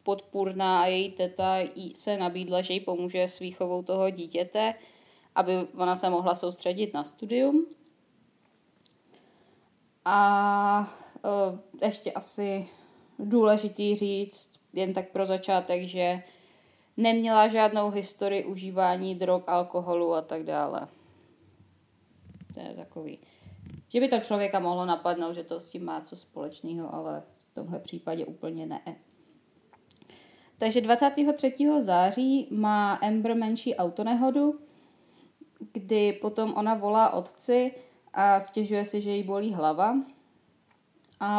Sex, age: female, 20-39